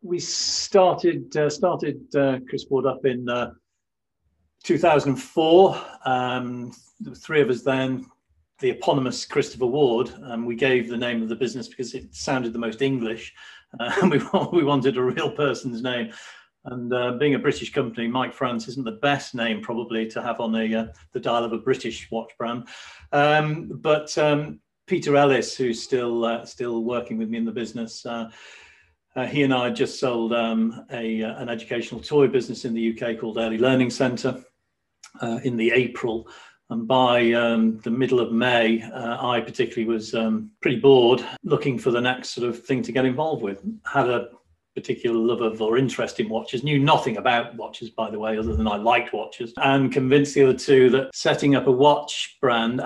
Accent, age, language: British, 40-59, English